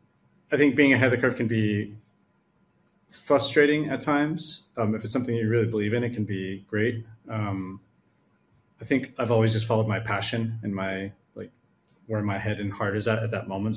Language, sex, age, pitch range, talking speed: English, male, 30-49, 100-115 Hz, 200 wpm